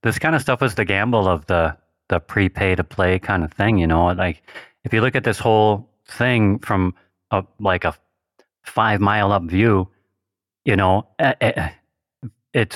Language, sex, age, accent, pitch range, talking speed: English, male, 30-49, American, 95-115 Hz, 180 wpm